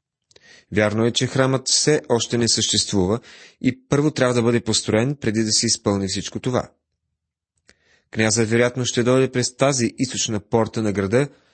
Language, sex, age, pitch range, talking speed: Bulgarian, male, 30-49, 105-135 Hz, 155 wpm